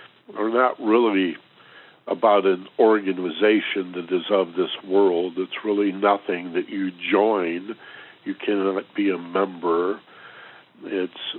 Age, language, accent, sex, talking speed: 60-79, English, American, male, 120 wpm